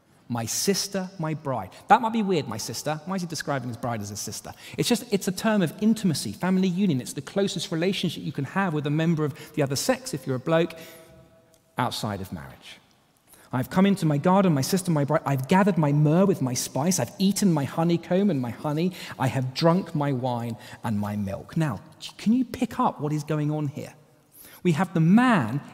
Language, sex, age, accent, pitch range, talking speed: English, male, 40-59, British, 150-205 Hz, 215 wpm